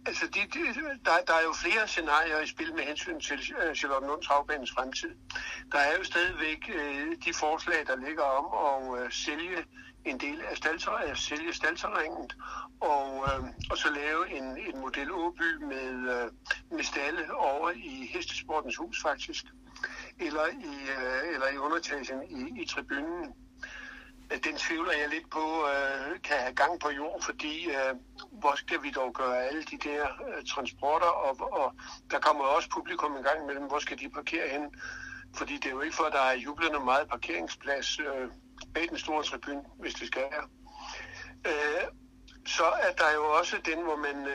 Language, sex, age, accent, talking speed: Danish, male, 60-79, native, 170 wpm